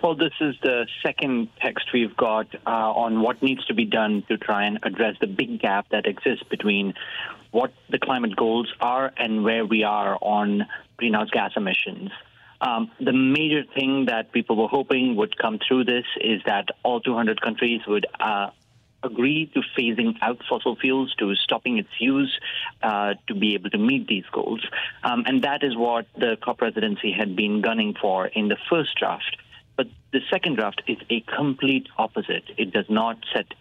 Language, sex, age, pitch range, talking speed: English, male, 30-49, 110-140 Hz, 185 wpm